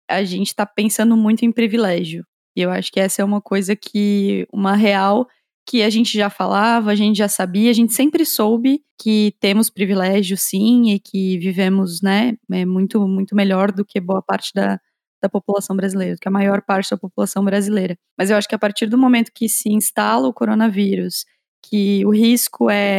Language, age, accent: Portuguese, 20-39, Brazilian